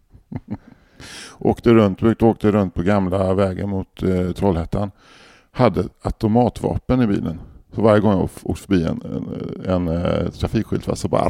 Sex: male